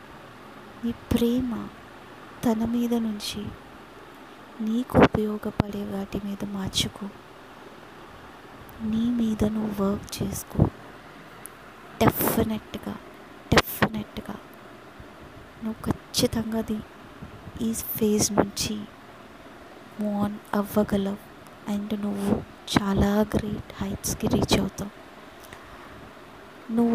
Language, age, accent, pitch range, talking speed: Telugu, 20-39, native, 205-230 Hz, 70 wpm